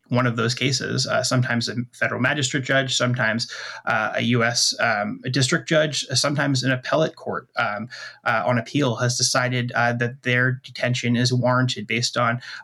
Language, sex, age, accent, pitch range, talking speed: English, male, 30-49, American, 120-130 Hz, 175 wpm